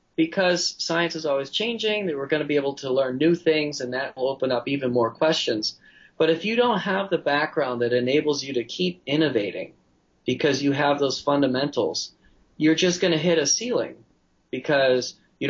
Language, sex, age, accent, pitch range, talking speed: English, male, 30-49, American, 130-170 Hz, 195 wpm